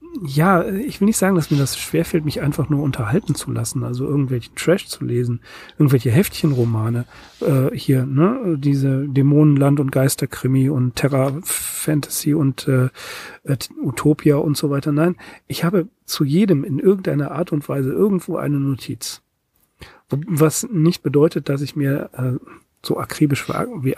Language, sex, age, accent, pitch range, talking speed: German, male, 40-59, German, 135-170 Hz, 155 wpm